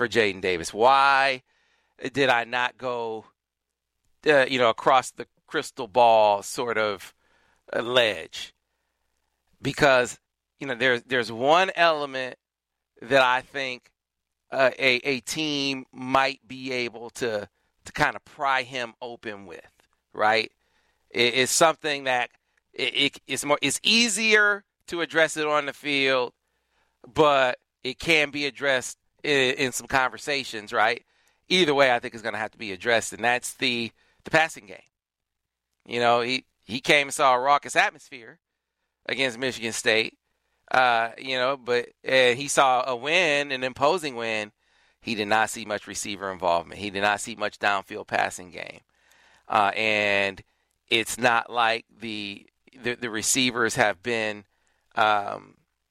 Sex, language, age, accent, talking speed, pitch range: male, English, 40-59, American, 145 wpm, 110-135 Hz